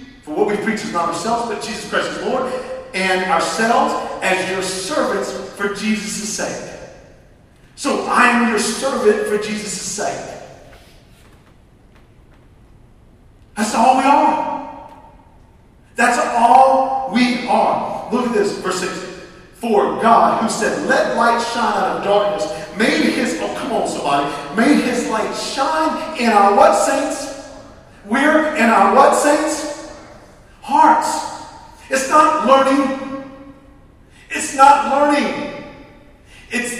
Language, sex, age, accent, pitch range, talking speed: English, male, 40-59, American, 205-270 Hz, 125 wpm